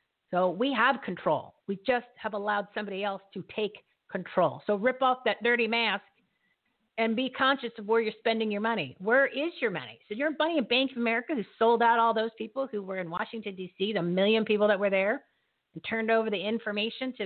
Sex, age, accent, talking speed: female, 40-59, American, 215 wpm